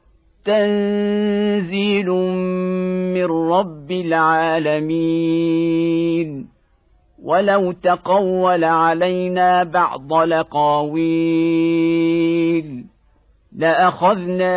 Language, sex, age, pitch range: Arabic, male, 50-69, 165-185 Hz